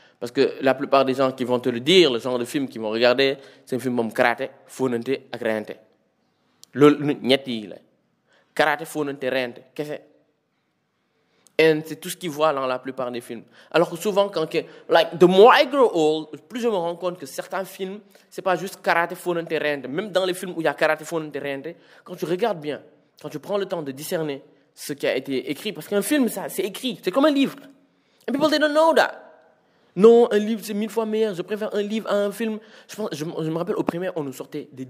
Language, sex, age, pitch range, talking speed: French, male, 20-39, 140-200 Hz, 230 wpm